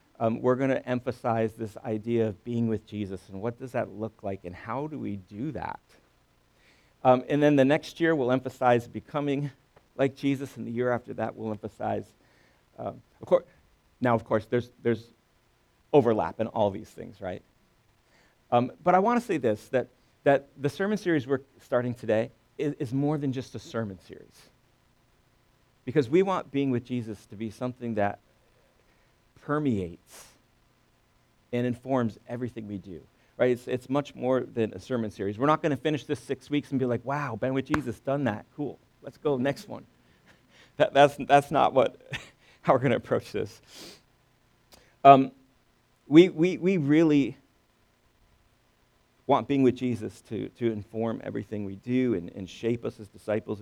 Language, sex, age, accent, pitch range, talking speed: English, male, 50-69, American, 110-135 Hz, 180 wpm